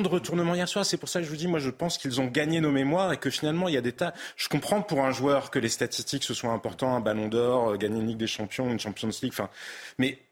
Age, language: 30-49, French